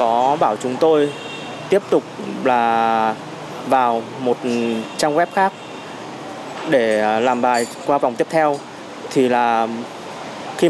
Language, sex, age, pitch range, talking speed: Vietnamese, male, 20-39, 120-160 Hz, 125 wpm